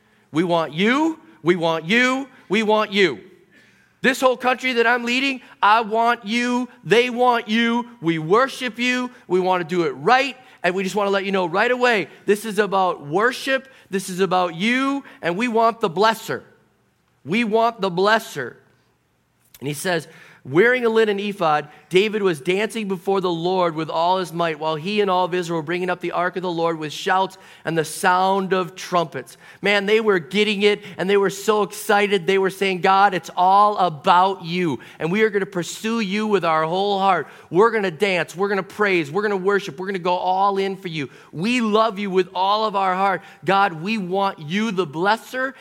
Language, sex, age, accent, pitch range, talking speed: English, male, 40-59, American, 180-220 Hz, 210 wpm